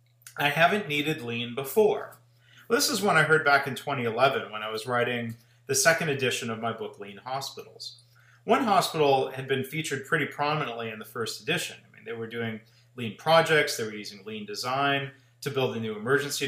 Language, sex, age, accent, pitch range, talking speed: English, male, 40-59, American, 120-160 Hz, 195 wpm